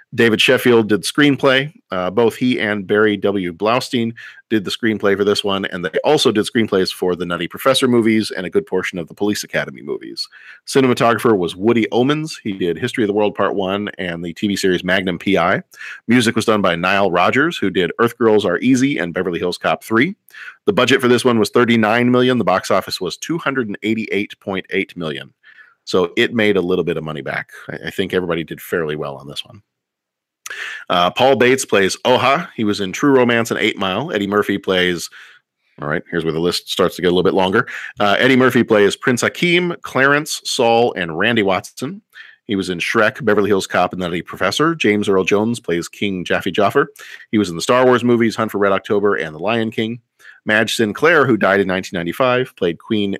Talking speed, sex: 210 wpm, male